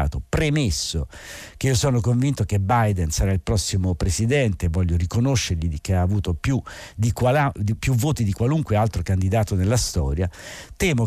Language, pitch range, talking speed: Italian, 90-115 Hz, 155 wpm